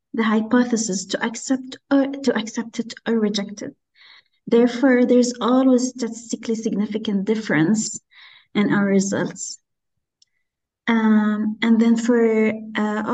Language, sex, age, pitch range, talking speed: Arabic, female, 30-49, 200-235 Hz, 115 wpm